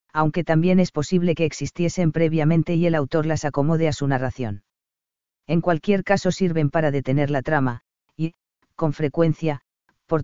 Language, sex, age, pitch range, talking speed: Spanish, female, 40-59, 145-170 Hz, 160 wpm